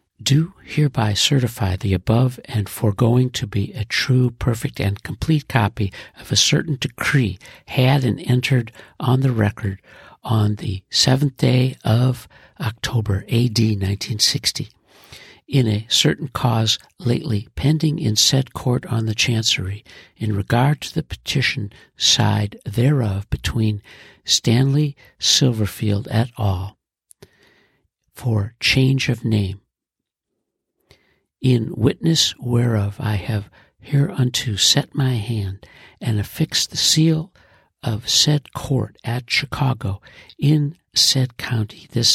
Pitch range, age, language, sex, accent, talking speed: 105-135 Hz, 60-79, English, male, American, 120 wpm